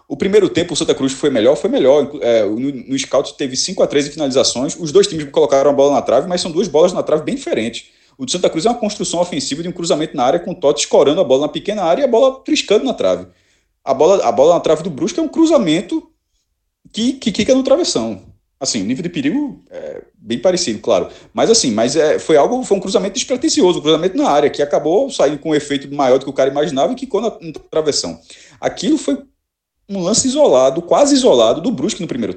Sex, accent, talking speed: male, Brazilian, 245 wpm